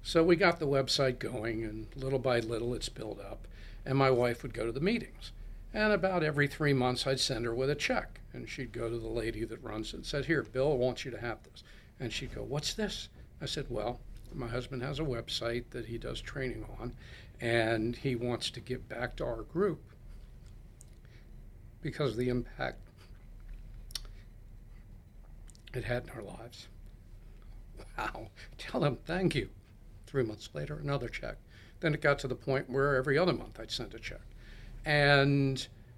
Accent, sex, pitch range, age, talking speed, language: American, male, 110-130 Hz, 60-79, 185 wpm, English